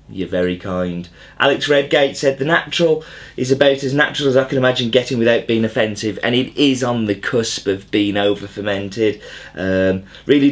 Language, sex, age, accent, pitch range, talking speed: English, male, 30-49, British, 110-135 Hz, 185 wpm